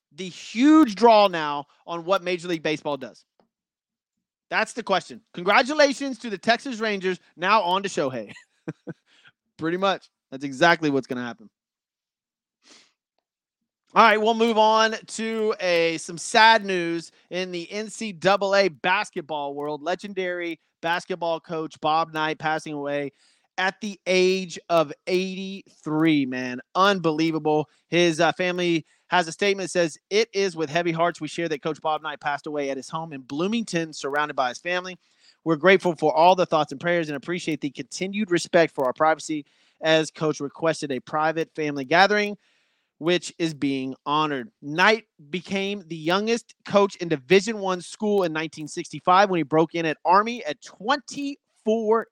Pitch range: 155-195 Hz